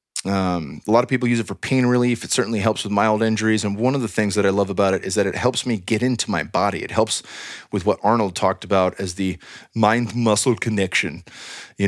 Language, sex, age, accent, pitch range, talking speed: English, male, 30-49, American, 100-120 Hz, 240 wpm